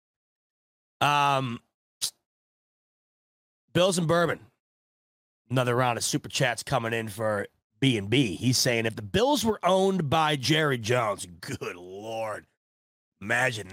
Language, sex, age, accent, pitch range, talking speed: English, male, 30-49, American, 110-160 Hz, 115 wpm